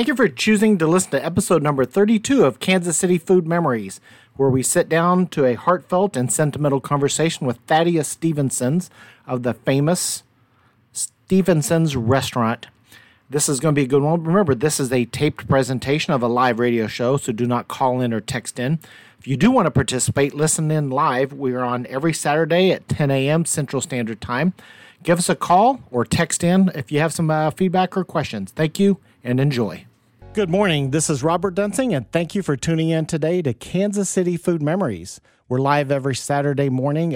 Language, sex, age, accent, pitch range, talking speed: English, male, 40-59, American, 125-170 Hz, 195 wpm